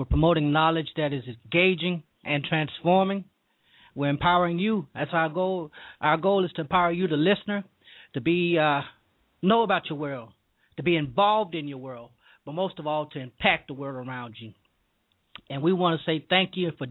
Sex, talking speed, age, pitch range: male, 190 wpm, 30-49, 145-180 Hz